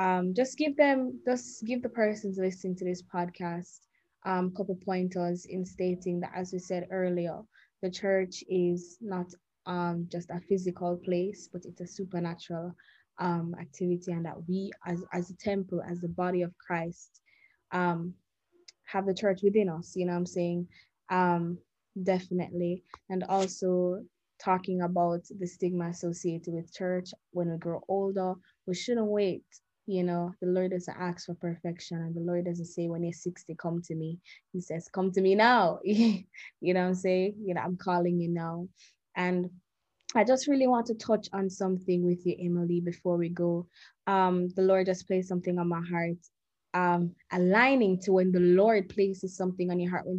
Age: 20-39